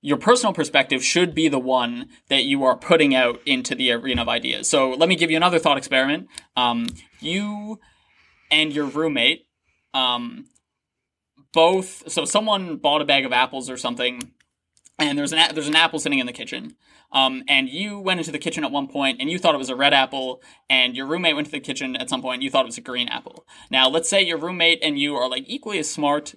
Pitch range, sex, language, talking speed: 135-185 Hz, male, English, 225 wpm